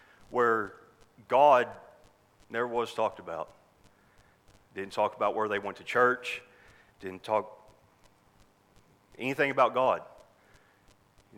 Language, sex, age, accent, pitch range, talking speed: English, male, 40-59, American, 100-125 Hz, 105 wpm